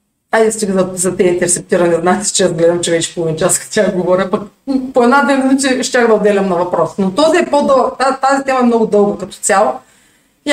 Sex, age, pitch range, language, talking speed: female, 40-59, 215-275 Hz, Bulgarian, 195 wpm